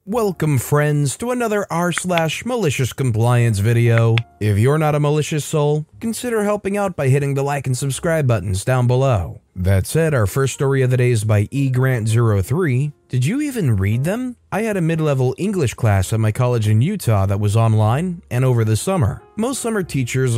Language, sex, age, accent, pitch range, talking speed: English, male, 30-49, American, 110-155 Hz, 190 wpm